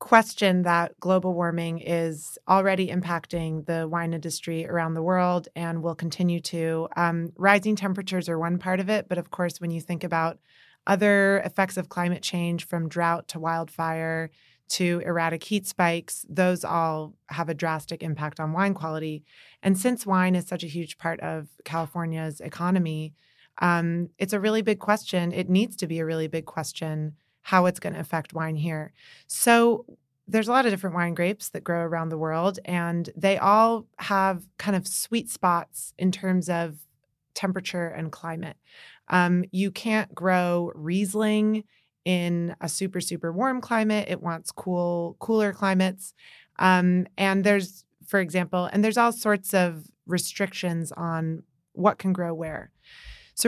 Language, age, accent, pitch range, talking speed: English, 30-49, American, 165-195 Hz, 165 wpm